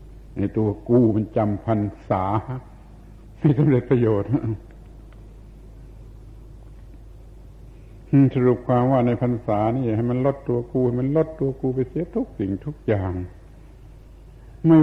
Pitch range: 105-125 Hz